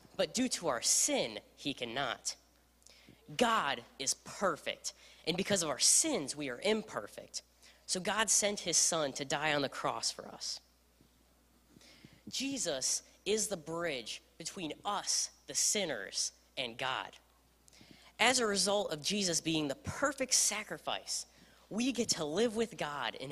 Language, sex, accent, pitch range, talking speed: English, female, American, 140-215 Hz, 145 wpm